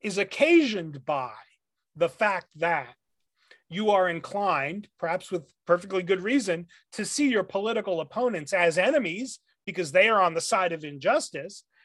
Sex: male